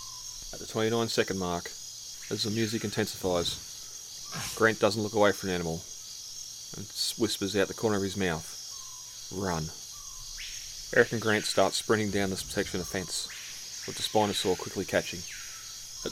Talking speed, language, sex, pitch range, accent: 155 wpm, English, male, 95-110 Hz, Australian